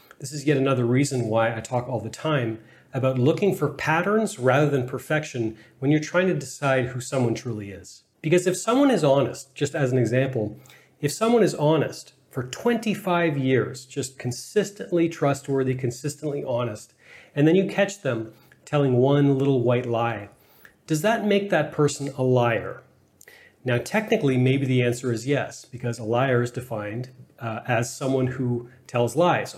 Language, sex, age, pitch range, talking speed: English, male, 30-49, 125-155 Hz, 170 wpm